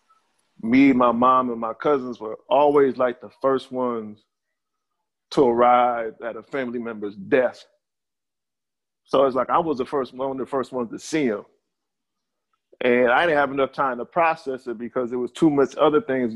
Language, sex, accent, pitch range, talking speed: English, male, American, 120-150 Hz, 185 wpm